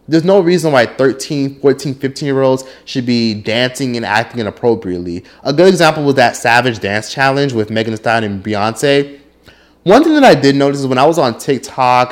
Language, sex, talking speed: English, male, 205 wpm